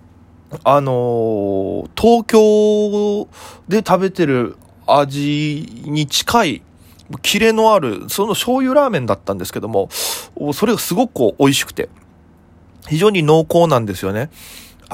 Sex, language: male, Japanese